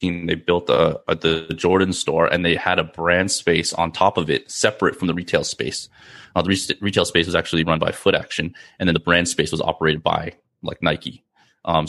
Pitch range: 80-90 Hz